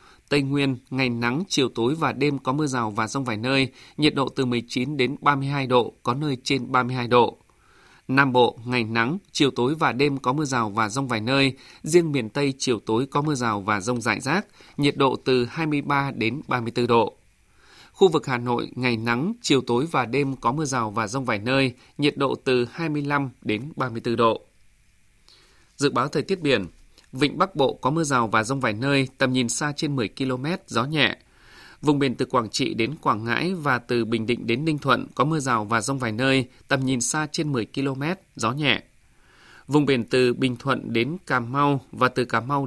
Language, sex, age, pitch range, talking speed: Vietnamese, male, 20-39, 120-145 Hz, 210 wpm